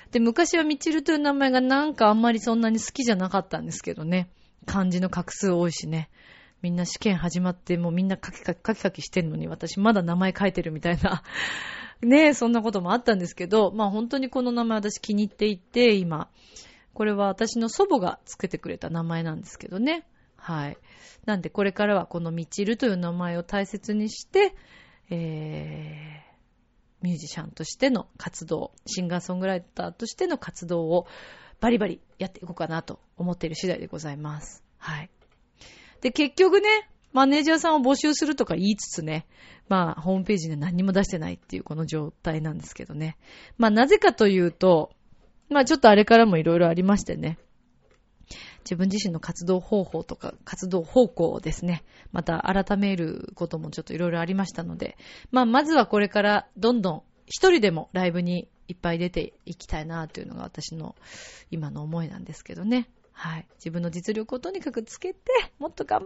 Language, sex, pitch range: Japanese, female, 170-235 Hz